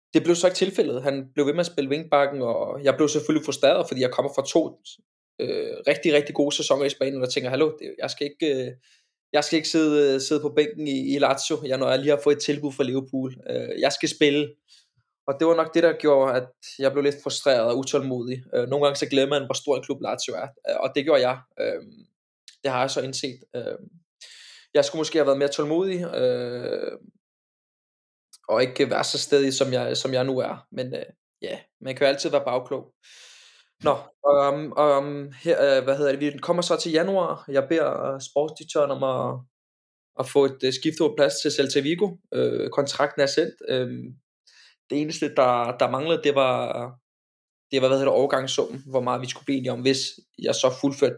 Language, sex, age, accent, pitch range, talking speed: Danish, male, 20-39, native, 135-155 Hz, 205 wpm